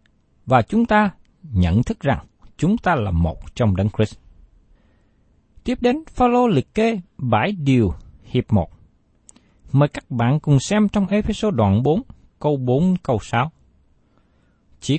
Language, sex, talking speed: Vietnamese, male, 145 wpm